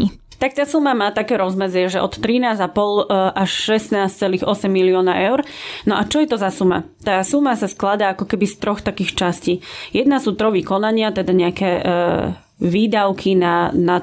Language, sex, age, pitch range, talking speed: Slovak, female, 20-39, 185-220 Hz, 165 wpm